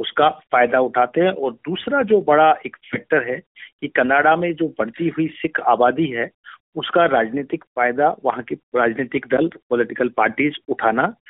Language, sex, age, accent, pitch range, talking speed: Hindi, male, 50-69, native, 125-165 Hz, 160 wpm